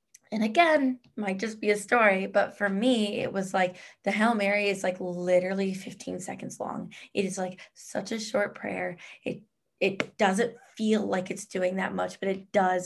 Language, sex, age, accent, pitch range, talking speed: English, female, 20-39, American, 190-225 Hz, 190 wpm